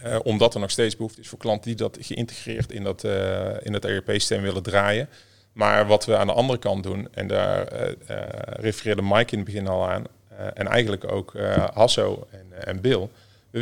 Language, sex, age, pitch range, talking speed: Dutch, male, 40-59, 100-115 Hz, 220 wpm